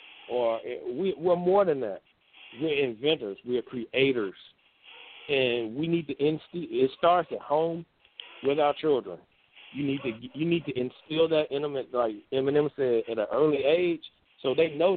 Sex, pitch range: male, 125-165 Hz